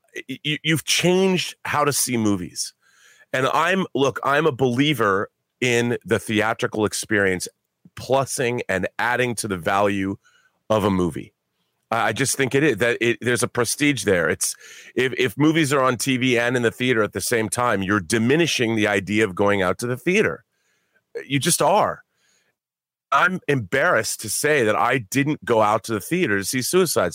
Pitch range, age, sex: 115-155 Hz, 30-49, male